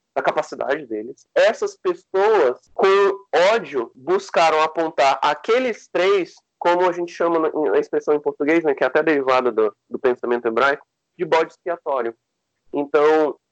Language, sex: Portuguese, male